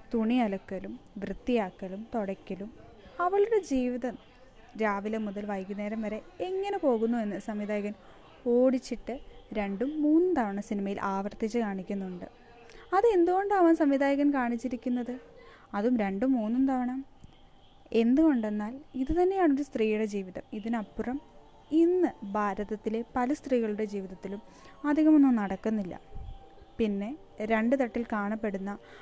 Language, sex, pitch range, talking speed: Malayalam, female, 205-265 Hz, 95 wpm